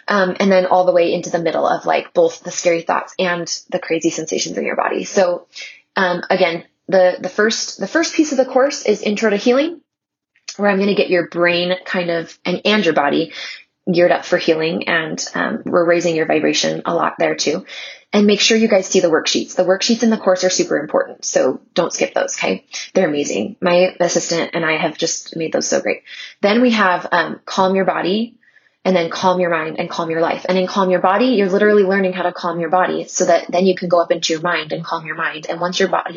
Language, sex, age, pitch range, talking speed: English, female, 20-39, 175-220 Hz, 240 wpm